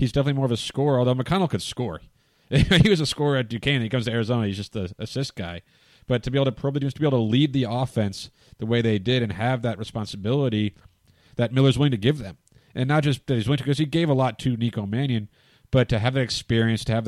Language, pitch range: English, 105-130 Hz